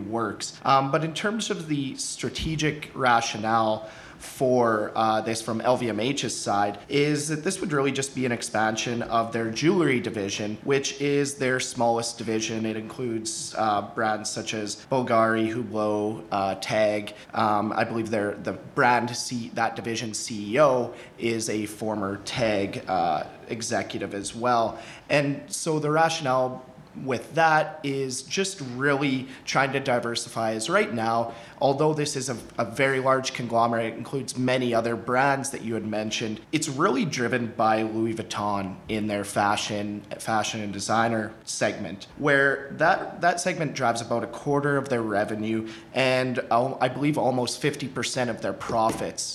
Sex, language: male, English